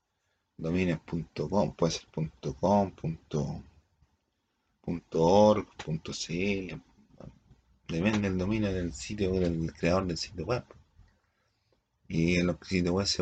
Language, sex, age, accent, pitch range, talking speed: Spanish, male, 40-59, Italian, 85-100 Hz, 105 wpm